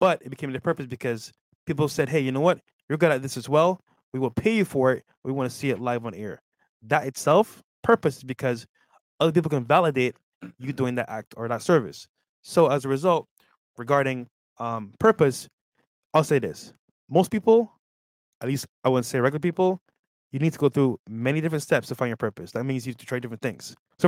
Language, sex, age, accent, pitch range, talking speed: English, male, 20-39, American, 120-155 Hz, 220 wpm